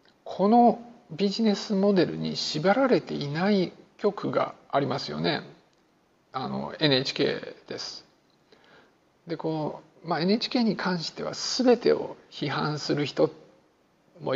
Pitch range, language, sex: 150-205 Hz, Japanese, male